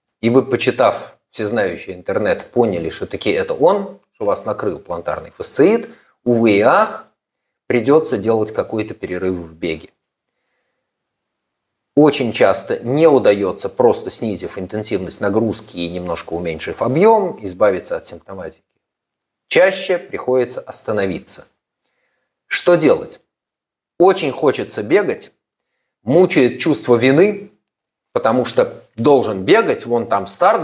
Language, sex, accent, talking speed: Russian, male, native, 110 wpm